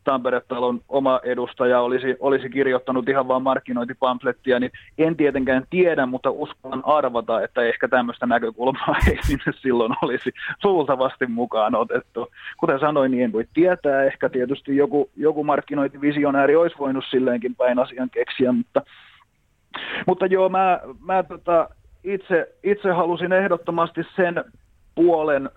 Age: 30-49